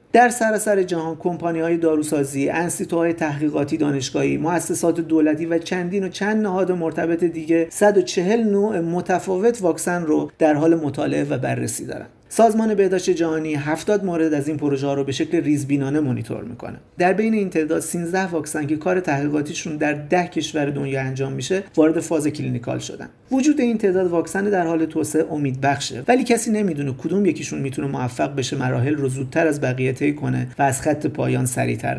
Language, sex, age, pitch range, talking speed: Persian, male, 50-69, 140-180 Hz, 175 wpm